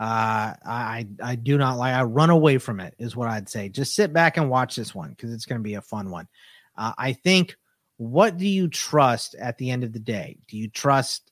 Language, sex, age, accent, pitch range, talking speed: English, male, 30-49, American, 115-150 Hz, 245 wpm